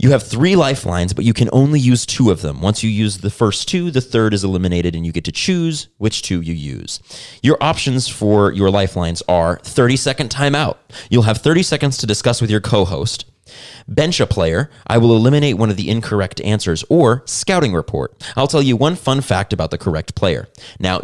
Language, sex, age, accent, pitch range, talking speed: English, male, 30-49, American, 95-135 Hz, 210 wpm